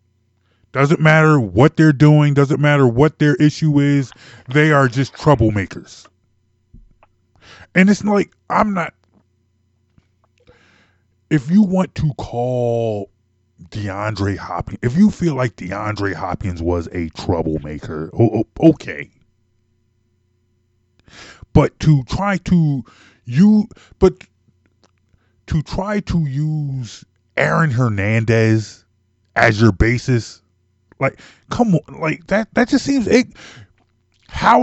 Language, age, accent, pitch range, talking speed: English, 20-39, American, 95-150 Hz, 105 wpm